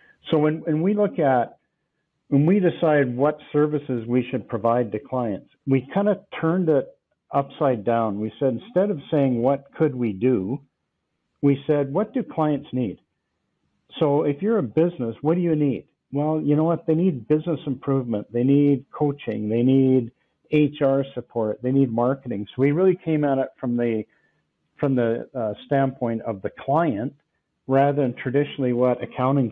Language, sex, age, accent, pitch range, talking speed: English, male, 50-69, American, 120-150 Hz, 175 wpm